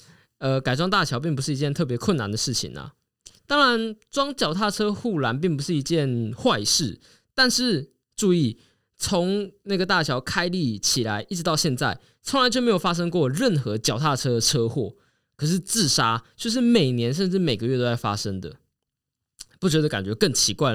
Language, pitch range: Chinese, 120-185 Hz